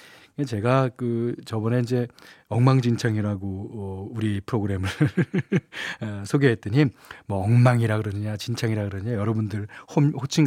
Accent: native